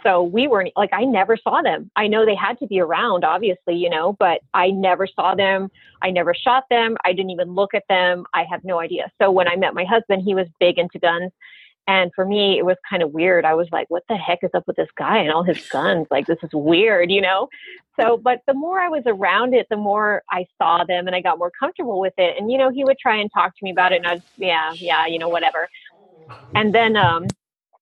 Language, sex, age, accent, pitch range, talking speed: English, female, 30-49, American, 175-230 Hz, 255 wpm